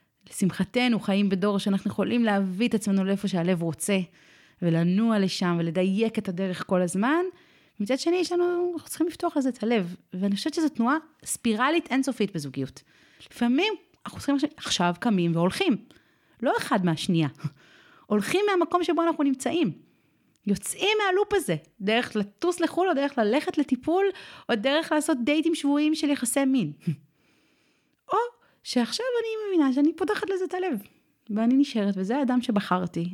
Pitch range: 185-285 Hz